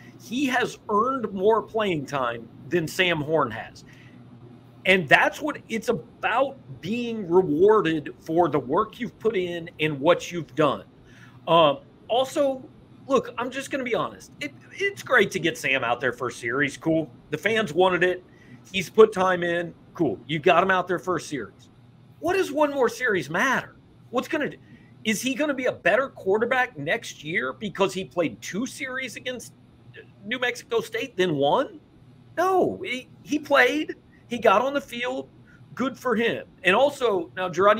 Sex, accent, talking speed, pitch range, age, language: male, American, 175 wpm, 150-245 Hz, 40-59, English